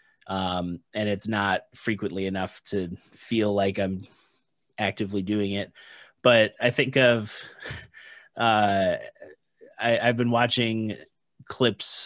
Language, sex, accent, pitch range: English, male, American, 105-125 Hz